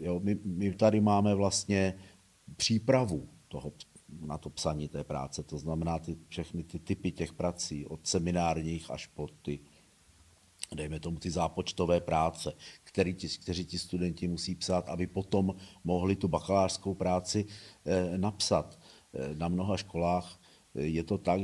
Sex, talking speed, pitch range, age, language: male, 135 wpm, 85-100 Hz, 50-69, Czech